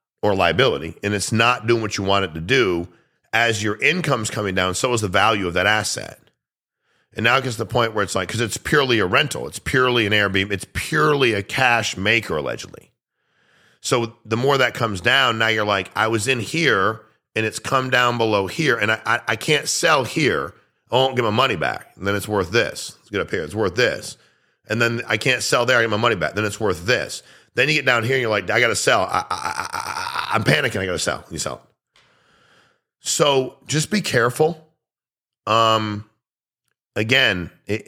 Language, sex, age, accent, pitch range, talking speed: English, male, 40-59, American, 105-125 Hz, 215 wpm